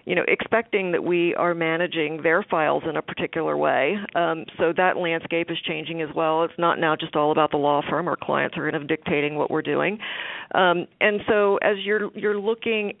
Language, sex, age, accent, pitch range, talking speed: English, female, 50-69, American, 160-190 Hz, 210 wpm